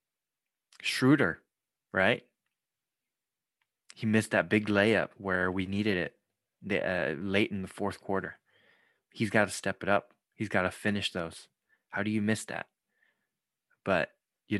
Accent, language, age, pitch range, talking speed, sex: American, English, 20-39, 95-110 Hz, 145 wpm, male